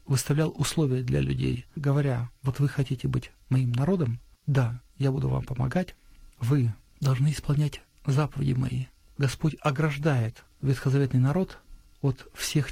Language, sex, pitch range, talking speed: Russian, male, 125-145 Hz, 125 wpm